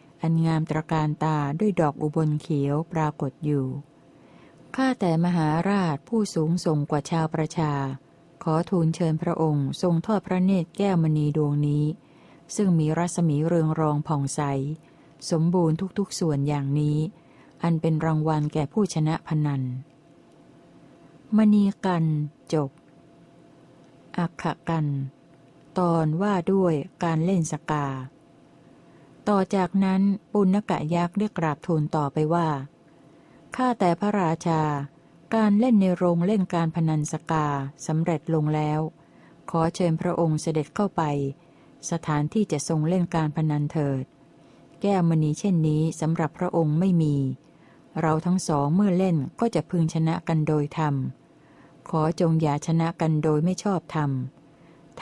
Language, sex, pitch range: Thai, female, 150-175 Hz